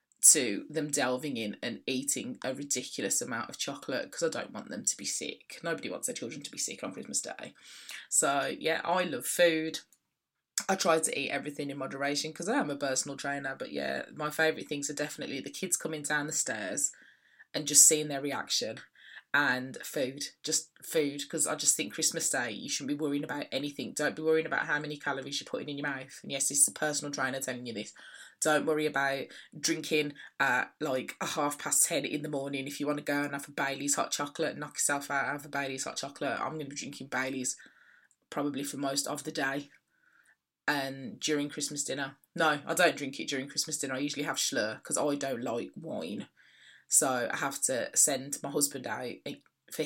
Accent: British